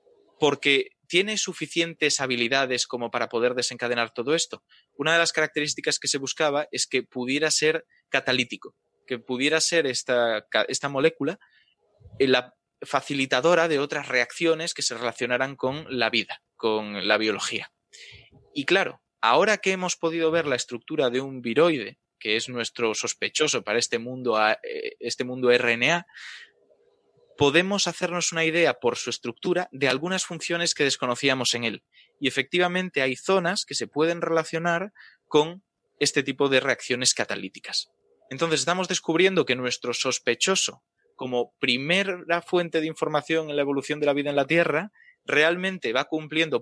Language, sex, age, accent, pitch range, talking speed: Spanish, male, 20-39, Spanish, 125-170 Hz, 145 wpm